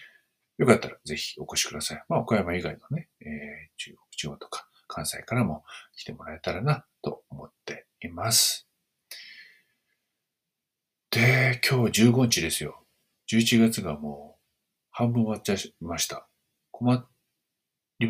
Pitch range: 80-120 Hz